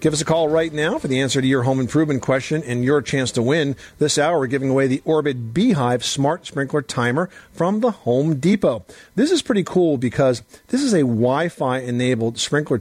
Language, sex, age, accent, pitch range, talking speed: English, male, 50-69, American, 120-155 Hz, 210 wpm